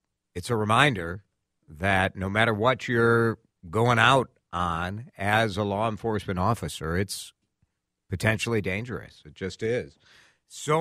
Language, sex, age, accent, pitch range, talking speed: English, male, 50-69, American, 85-115 Hz, 130 wpm